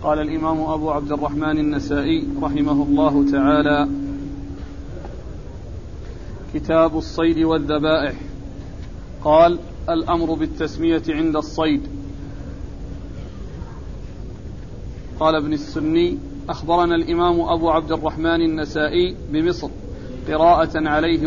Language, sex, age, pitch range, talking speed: Arabic, male, 40-59, 150-170 Hz, 80 wpm